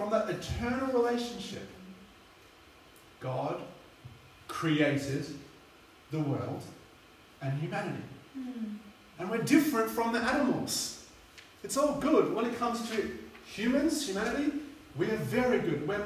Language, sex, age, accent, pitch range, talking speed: English, male, 30-49, Australian, 170-235 Hz, 110 wpm